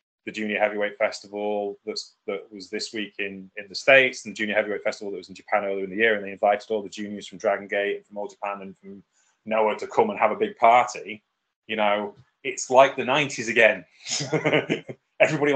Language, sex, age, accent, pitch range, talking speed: English, male, 20-39, British, 110-165 Hz, 220 wpm